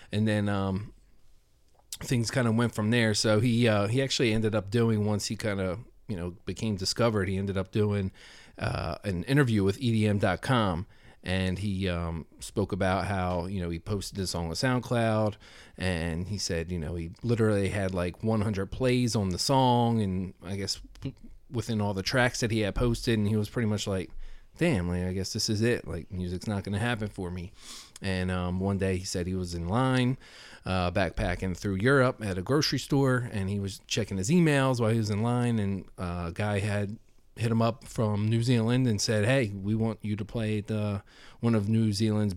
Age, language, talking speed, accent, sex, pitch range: 30-49, English, 210 wpm, American, male, 95-115 Hz